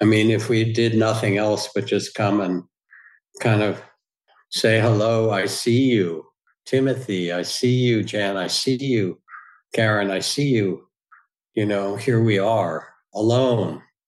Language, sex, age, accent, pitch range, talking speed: English, male, 60-79, American, 95-120 Hz, 155 wpm